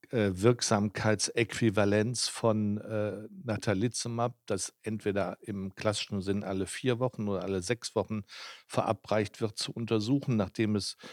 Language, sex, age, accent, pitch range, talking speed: German, male, 60-79, German, 95-110 Hz, 120 wpm